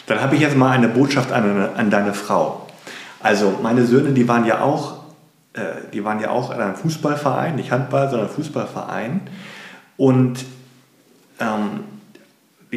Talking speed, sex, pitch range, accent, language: 145 wpm, male, 115-145 Hz, German, German